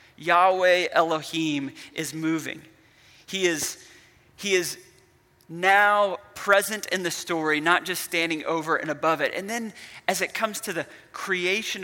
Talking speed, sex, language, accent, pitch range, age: 135 wpm, male, English, American, 150-175 Hz, 30-49